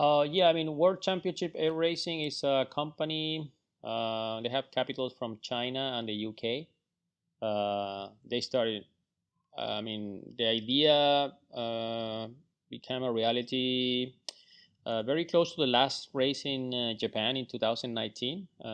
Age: 30-49